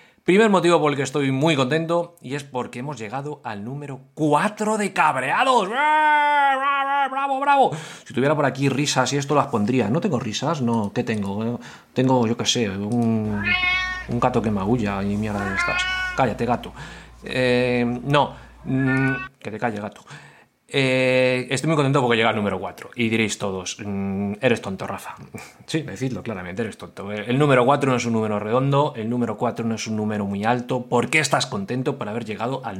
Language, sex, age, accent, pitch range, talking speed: Spanish, male, 30-49, Spanish, 115-150 Hz, 195 wpm